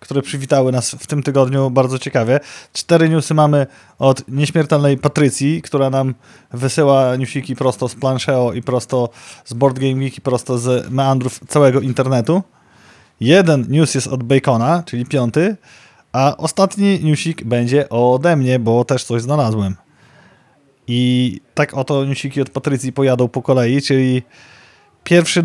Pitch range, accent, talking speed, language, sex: 130-150 Hz, native, 135 wpm, Polish, male